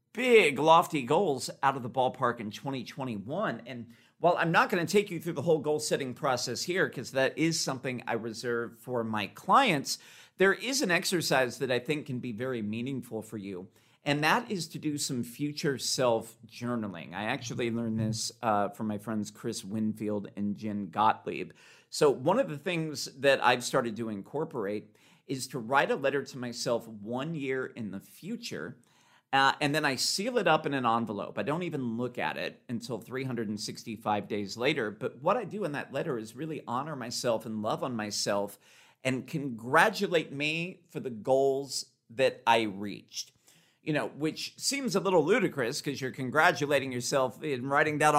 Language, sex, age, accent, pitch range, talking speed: English, male, 50-69, American, 115-155 Hz, 185 wpm